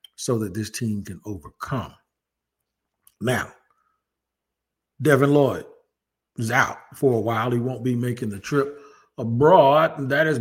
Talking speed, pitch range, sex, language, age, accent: 140 wpm, 110-140 Hz, male, English, 50-69, American